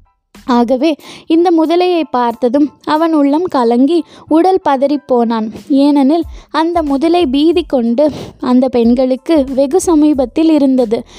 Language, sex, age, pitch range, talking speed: Tamil, female, 20-39, 260-320 Hz, 100 wpm